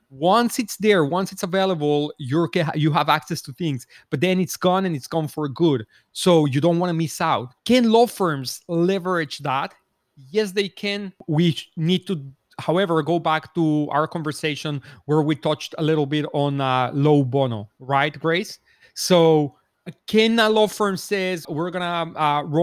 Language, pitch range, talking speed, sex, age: English, 140-170 Hz, 180 wpm, male, 30-49